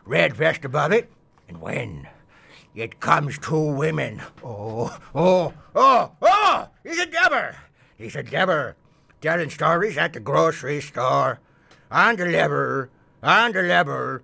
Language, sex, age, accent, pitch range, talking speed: English, male, 60-79, American, 135-165 Hz, 135 wpm